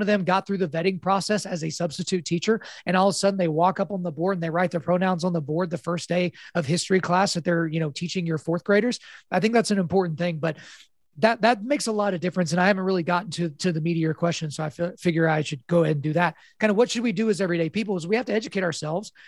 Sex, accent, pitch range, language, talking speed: male, American, 165-195 Hz, English, 300 wpm